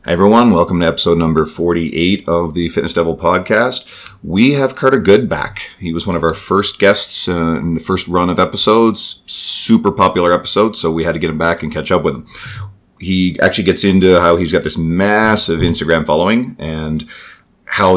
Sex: male